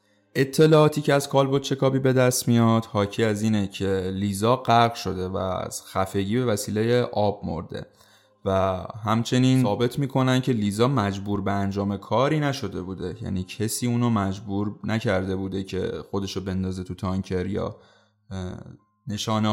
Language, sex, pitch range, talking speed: Persian, male, 100-130 Hz, 145 wpm